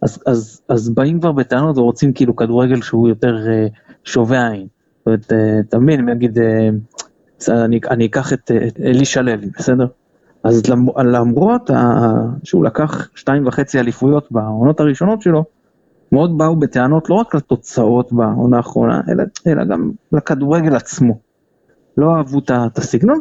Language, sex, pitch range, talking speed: Hebrew, male, 120-170 Hz, 145 wpm